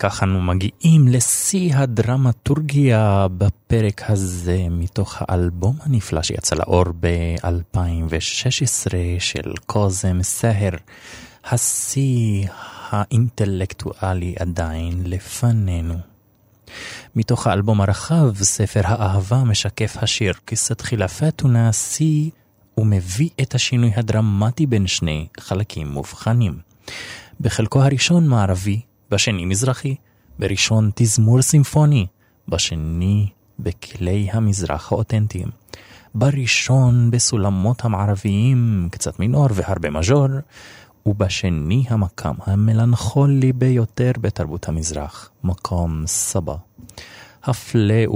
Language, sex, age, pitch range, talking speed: Hebrew, male, 30-49, 90-120 Hz, 80 wpm